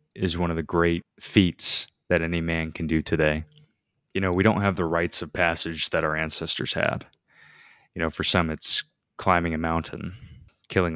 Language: English